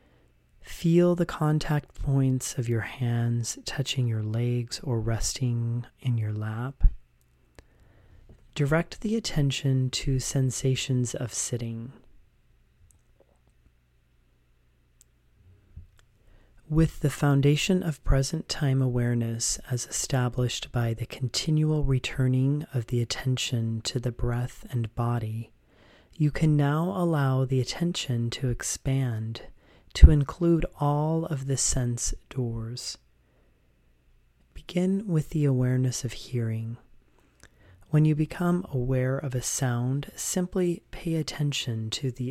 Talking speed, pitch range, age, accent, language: 110 wpm, 115-145 Hz, 40-59, American, English